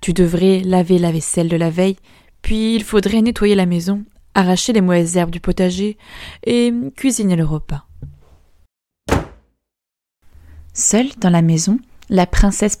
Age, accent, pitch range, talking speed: 20-39, French, 170-230 Hz, 150 wpm